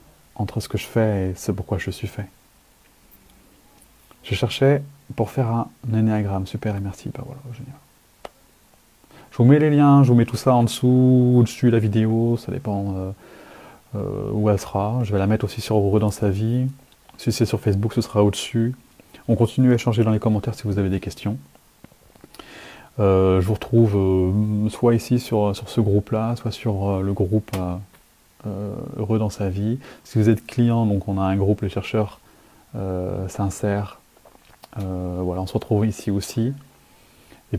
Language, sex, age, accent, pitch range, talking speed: French, male, 30-49, French, 100-115 Hz, 195 wpm